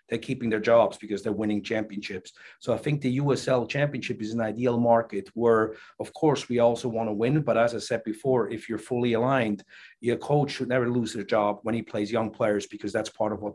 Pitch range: 110-135 Hz